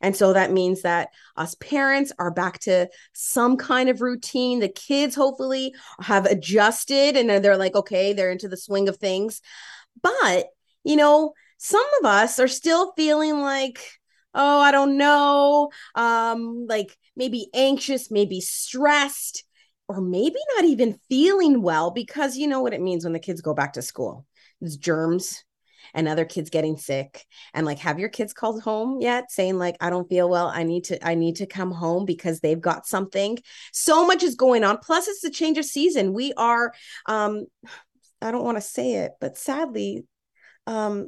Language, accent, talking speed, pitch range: English, American, 180 wpm, 185-275 Hz